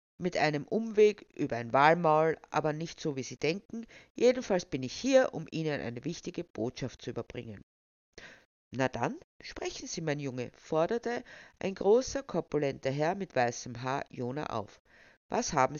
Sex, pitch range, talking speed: female, 145-215 Hz, 155 wpm